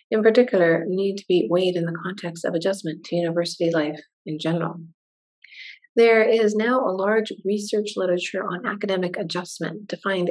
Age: 30-49